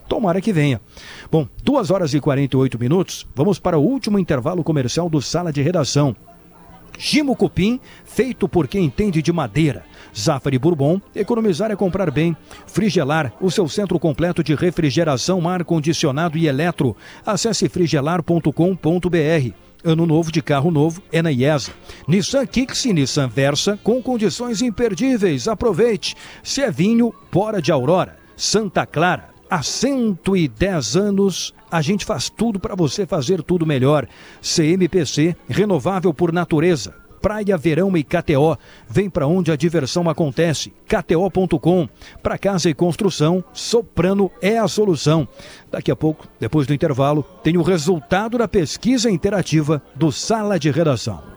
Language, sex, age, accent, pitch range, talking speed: Portuguese, male, 50-69, Brazilian, 150-195 Hz, 145 wpm